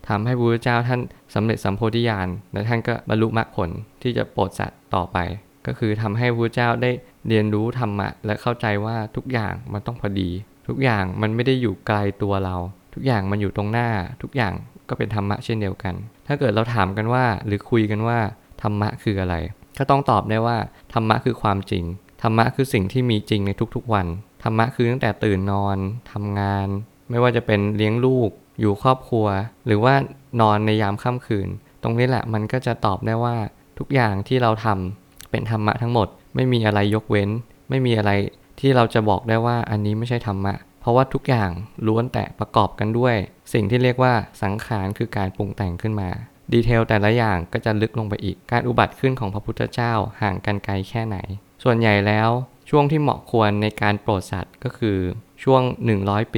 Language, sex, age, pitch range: Thai, male, 20-39, 100-120 Hz